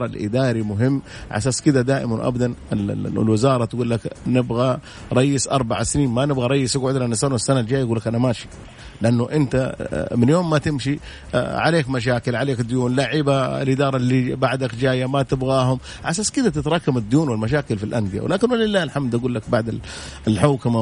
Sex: male